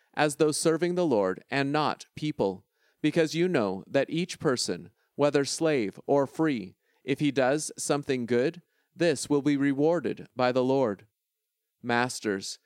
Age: 40-59